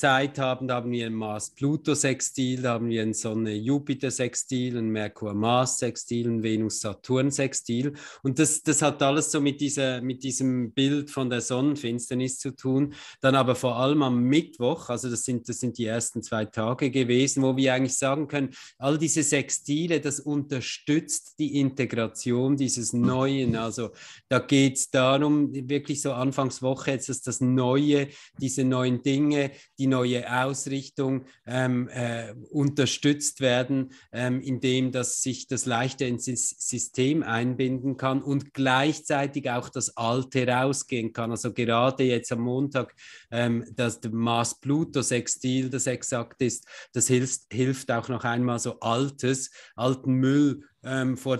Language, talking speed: German, 145 wpm